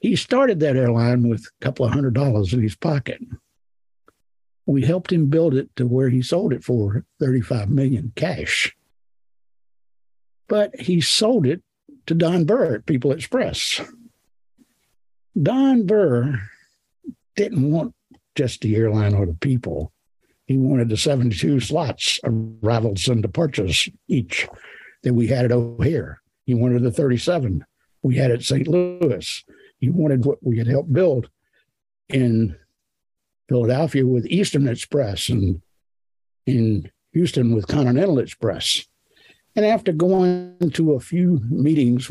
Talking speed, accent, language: 135 wpm, American, English